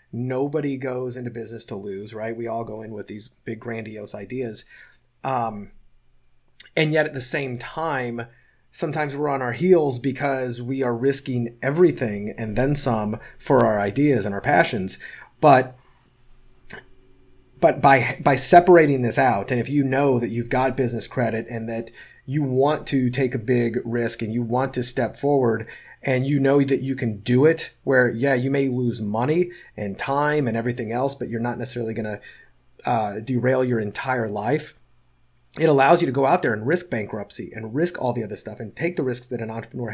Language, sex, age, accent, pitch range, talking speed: English, male, 30-49, American, 115-135 Hz, 190 wpm